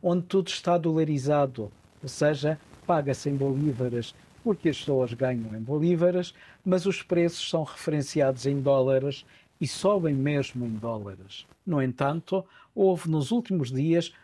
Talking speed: 140 wpm